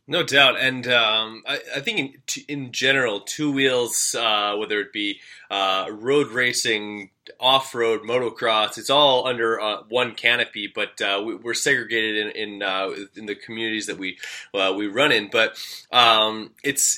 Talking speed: 170 wpm